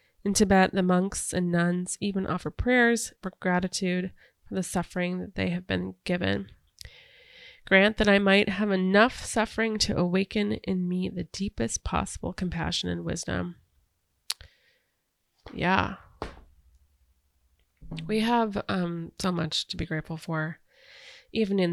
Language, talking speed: English, 135 wpm